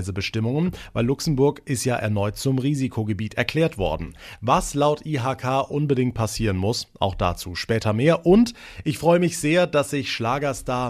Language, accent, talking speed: German, German, 155 wpm